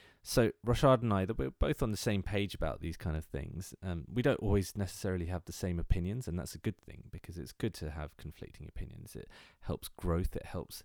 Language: English